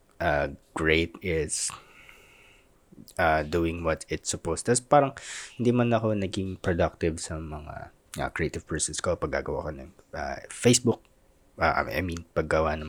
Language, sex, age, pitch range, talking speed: Filipino, male, 20-39, 80-100 Hz, 145 wpm